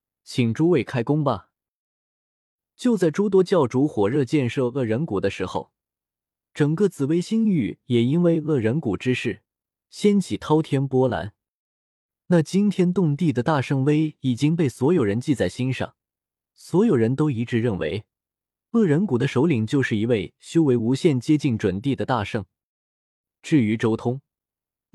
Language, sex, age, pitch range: Chinese, male, 20-39, 115-160 Hz